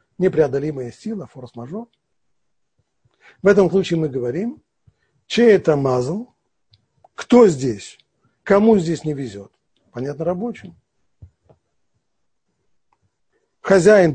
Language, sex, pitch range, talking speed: Russian, male, 130-175 Hz, 85 wpm